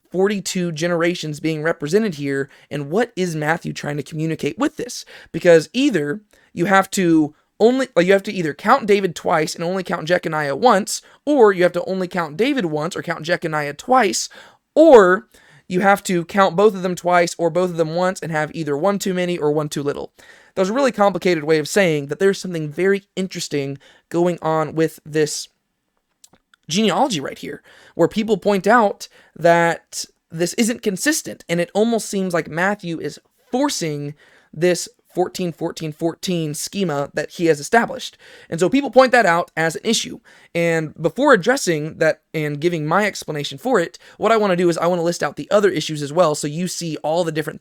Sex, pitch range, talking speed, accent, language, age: male, 155-195 Hz, 195 wpm, American, English, 20-39